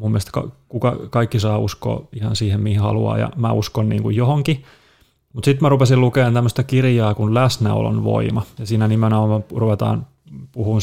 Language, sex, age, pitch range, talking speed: Finnish, male, 30-49, 105-120 Hz, 170 wpm